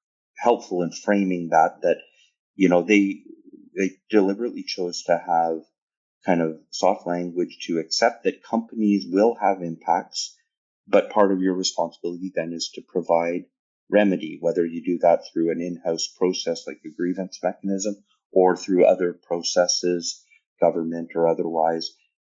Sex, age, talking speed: male, 40-59, 145 wpm